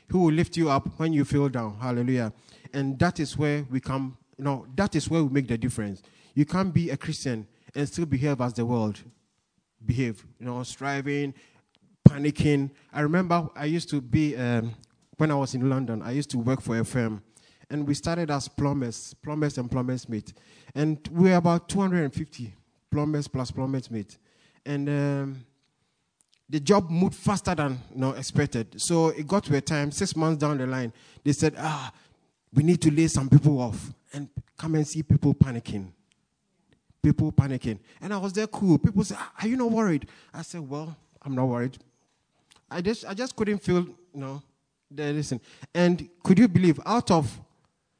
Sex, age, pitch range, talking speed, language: male, 30-49, 130-165 Hz, 185 wpm, English